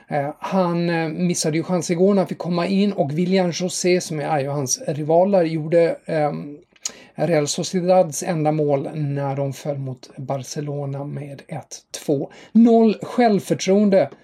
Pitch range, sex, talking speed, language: 145-180 Hz, male, 130 wpm, English